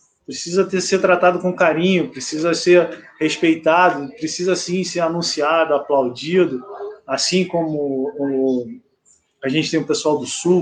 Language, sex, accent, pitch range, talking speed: Portuguese, male, Brazilian, 160-190 Hz, 140 wpm